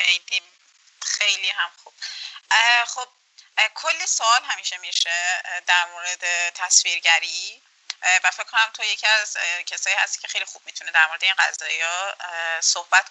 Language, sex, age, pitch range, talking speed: Persian, female, 30-49, 180-230 Hz, 135 wpm